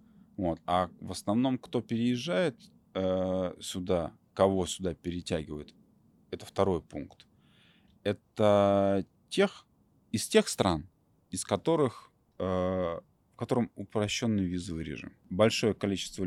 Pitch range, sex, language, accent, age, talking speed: 80-100 Hz, male, Russian, native, 30-49, 105 wpm